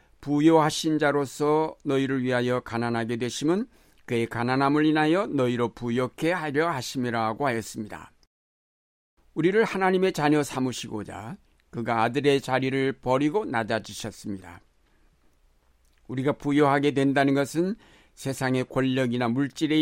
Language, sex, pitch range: Korean, male, 115-150 Hz